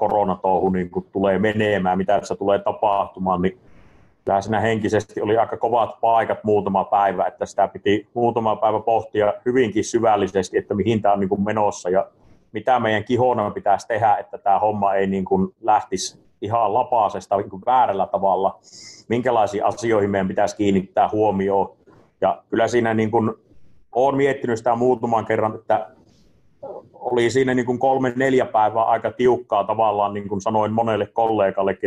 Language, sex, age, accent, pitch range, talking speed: Finnish, male, 30-49, native, 100-120 Hz, 150 wpm